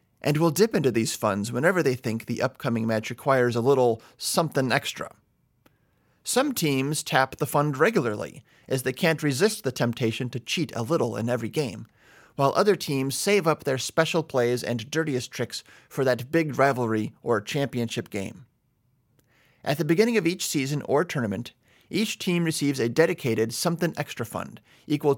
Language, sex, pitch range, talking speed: English, male, 120-155 Hz, 170 wpm